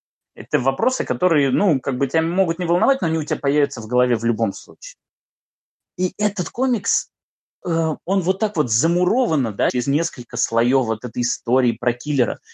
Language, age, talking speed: Russian, 20-39, 175 wpm